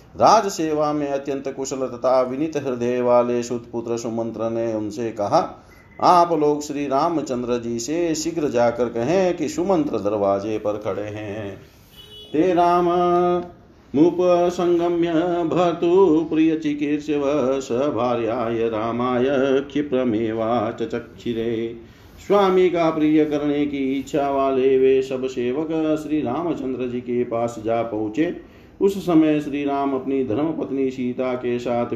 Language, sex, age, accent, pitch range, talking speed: Hindi, male, 50-69, native, 115-155 Hz, 90 wpm